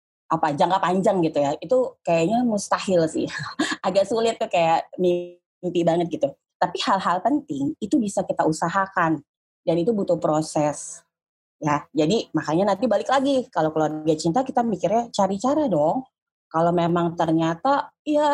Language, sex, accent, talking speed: Indonesian, female, native, 145 wpm